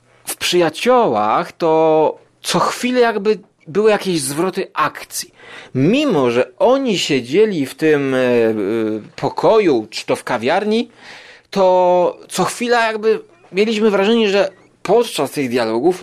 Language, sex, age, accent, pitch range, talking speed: Polish, male, 30-49, native, 125-190 Hz, 125 wpm